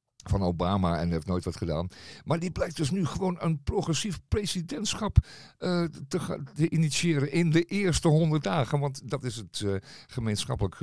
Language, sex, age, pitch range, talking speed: Dutch, male, 50-69, 90-140 Hz, 170 wpm